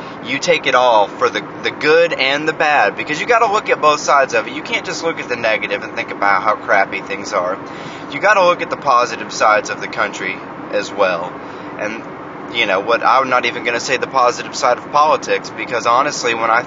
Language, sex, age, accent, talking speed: English, male, 30-49, American, 230 wpm